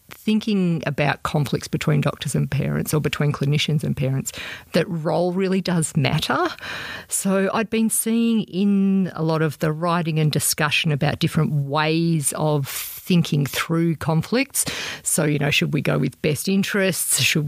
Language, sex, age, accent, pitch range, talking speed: English, female, 50-69, Australian, 155-195 Hz, 160 wpm